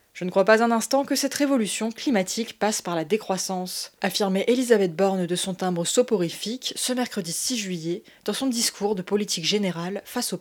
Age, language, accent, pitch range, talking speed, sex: 20-39, French, French, 185-235 Hz, 190 wpm, female